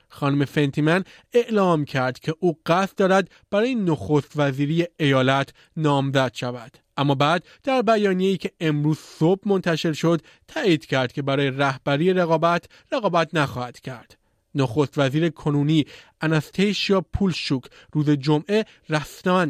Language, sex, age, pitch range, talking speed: Persian, male, 30-49, 140-185 Hz, 125 wpm